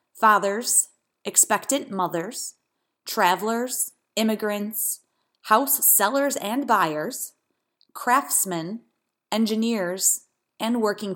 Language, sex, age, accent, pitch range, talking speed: English, female, 30-49, American, 170-235 Hz, 70 wpm